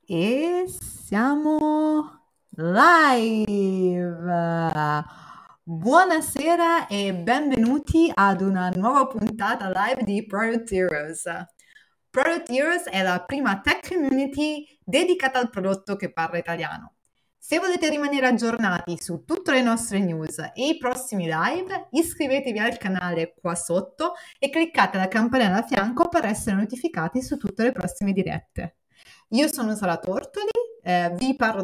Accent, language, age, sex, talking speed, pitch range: native, Italian, 30-49, female, 125 wpm, 185-280 Hz